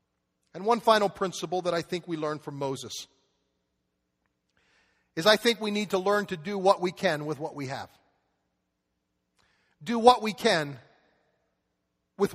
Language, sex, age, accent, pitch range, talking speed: English, male, 40-59, American, 180-235 Hz, 155 wpm